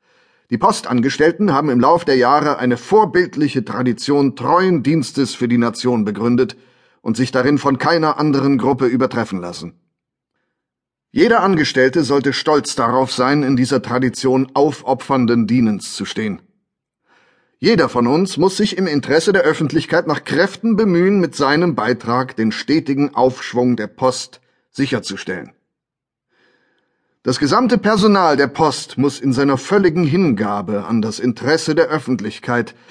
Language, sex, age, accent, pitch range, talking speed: German, male, 30-49, German, 125-165 Hz, 135 wpm